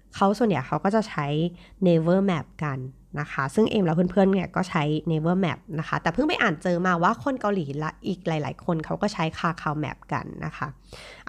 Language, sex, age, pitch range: Thai, female, 20-39, 155-195 Hz